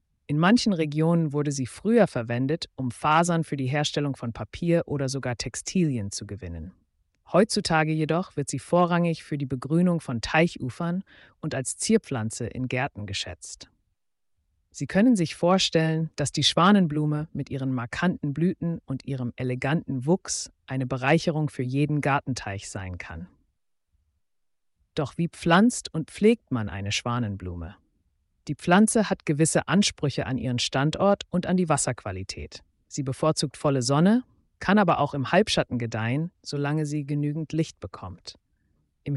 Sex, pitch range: female, 120-165 Hz